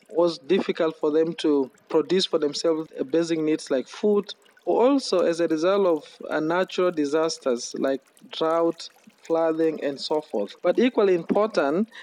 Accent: South African